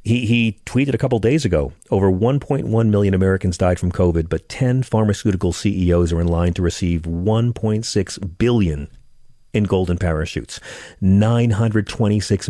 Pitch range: 95-140 Hz